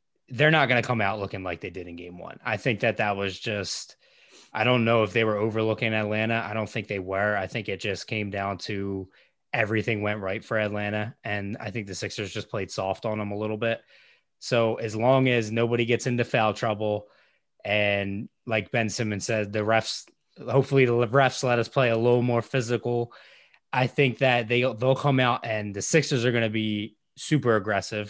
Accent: American